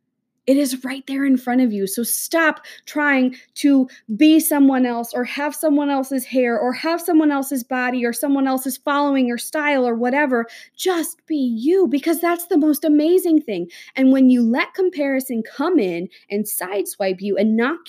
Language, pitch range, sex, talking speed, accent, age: English, 225-280 Hz, female, 180 wpm, American, 20-39